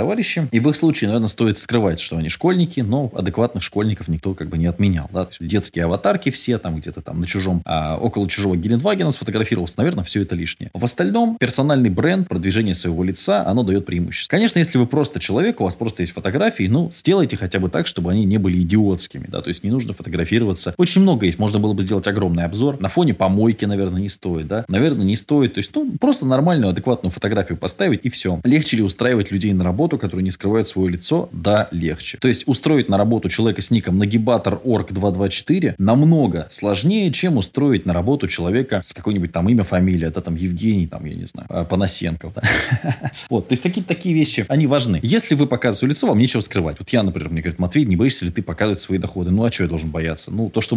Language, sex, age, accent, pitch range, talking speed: Russian, male, 20-39, native, 90-125 Hz, 215 wpm